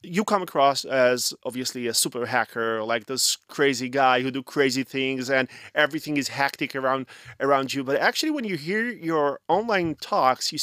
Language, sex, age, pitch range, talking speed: Hebrew, male, 30-49, 130-175 Hz, 180 wpm